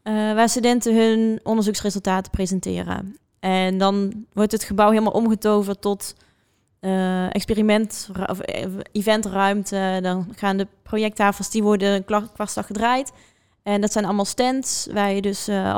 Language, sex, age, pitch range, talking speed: Dutch, female, 20-39, 195-230 Hz, 135 wpm